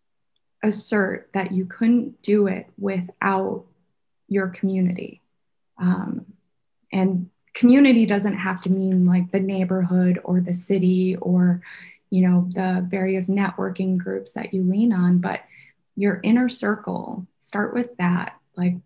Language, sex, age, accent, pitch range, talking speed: English, female, 20-39, American, 180-205 Hz, 130 wpm